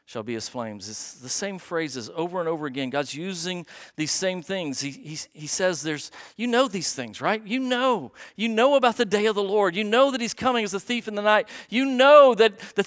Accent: American